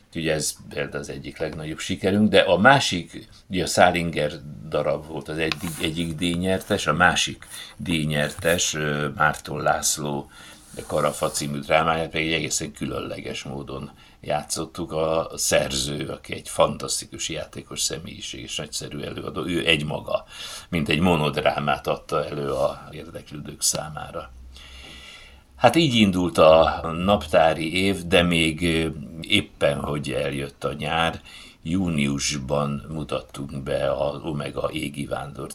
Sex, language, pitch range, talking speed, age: male, Hungarian, 70-85 Hz, 125 wpm, 60-79